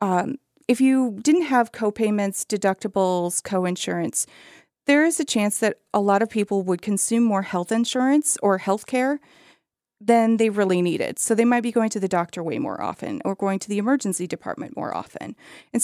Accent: American